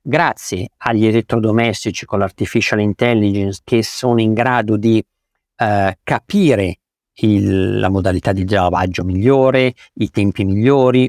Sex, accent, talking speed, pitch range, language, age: male, native, 115 wpm, 100-135 Hz, Italian, 50-69